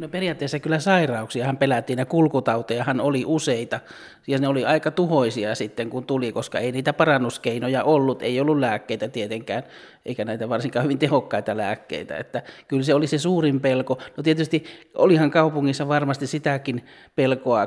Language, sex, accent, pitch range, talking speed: Finnish, male, native, 120-140 Hz, 160 wpm